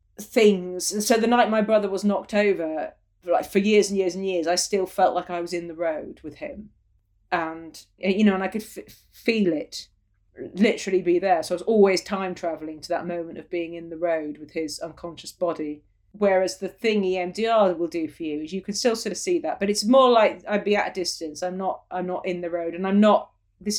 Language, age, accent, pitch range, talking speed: English, 30-49, British, 165-195 Hz, 230 wpm